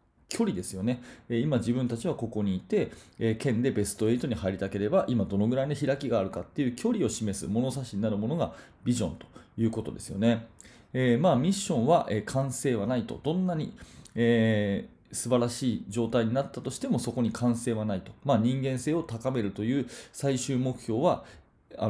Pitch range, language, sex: 110-140 Hz, Japanese, male